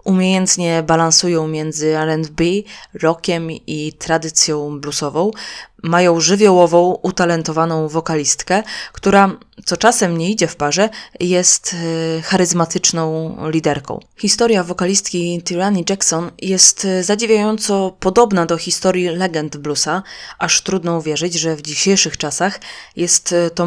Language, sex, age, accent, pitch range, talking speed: English, female, 20-39, Polish, 160-190 Hz, 105 wpm